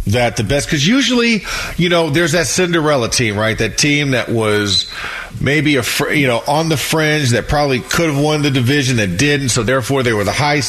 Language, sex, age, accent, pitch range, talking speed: English, male, 40-59, American, 120-155 Hz, 220 wpm